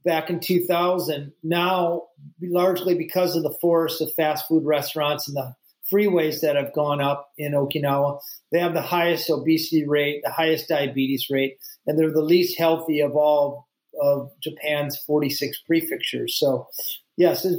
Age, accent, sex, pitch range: 40-59, American, male, 150-190 Hz